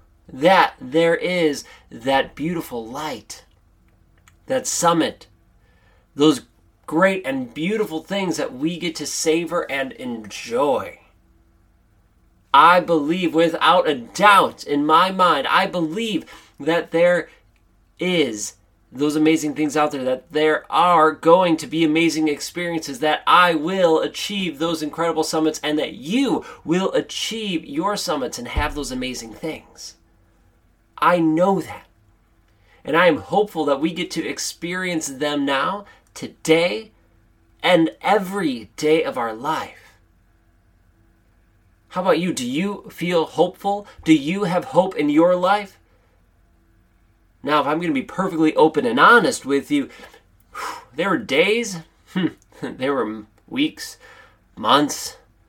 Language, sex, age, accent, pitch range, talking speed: English, male, 30-49, American, 105-175 Hz, 130 wpm